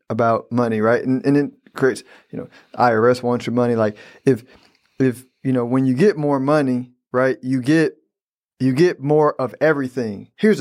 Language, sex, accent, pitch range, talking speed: English, male, American, 125-145 Hz, 180 wpm